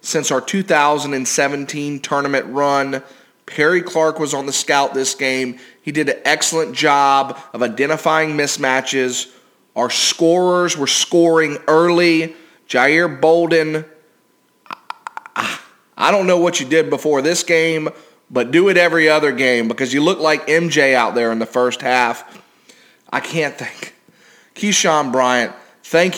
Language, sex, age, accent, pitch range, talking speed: English, male, 30-49, American, 130-165 Hz, 140 wpm